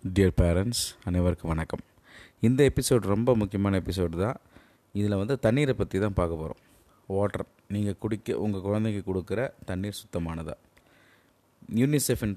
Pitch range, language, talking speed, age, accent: 90-110 Hz, Tamil, 130 wpm, 20-39, native